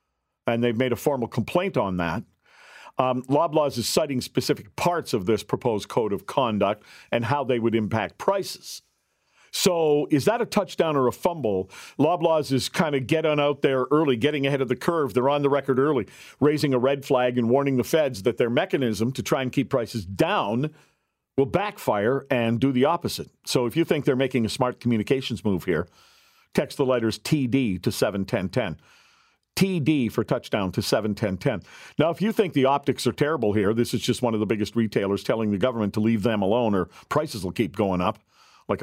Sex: male